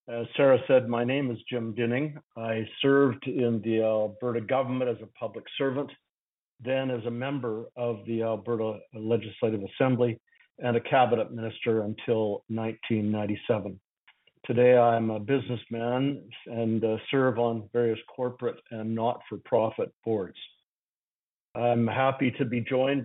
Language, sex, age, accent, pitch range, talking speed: English, male, 50-69, American, 115-135 Hz, 140 wpm